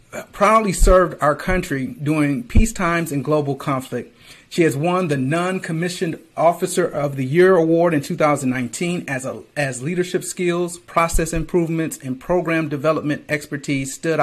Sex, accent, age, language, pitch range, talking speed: male, American, 40-59, English, 145-185 Hz, 140 wpm